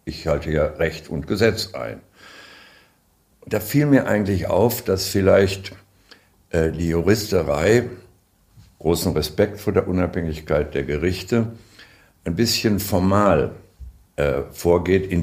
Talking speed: 110 wpm